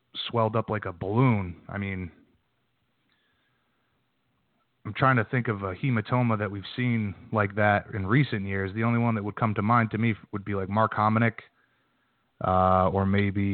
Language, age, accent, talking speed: English, 30-49, American, 175 wpm